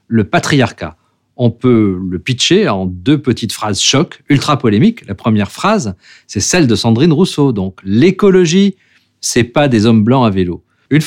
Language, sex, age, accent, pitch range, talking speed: French, male, 50-69, French, 110-155 Hz, 170 wpm